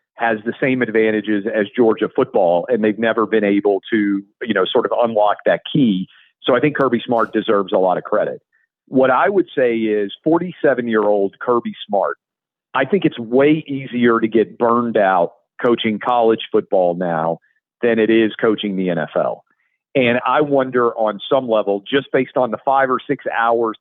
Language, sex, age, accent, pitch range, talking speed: English, male, 40-59, American, 105-135 Hz, 185 wpm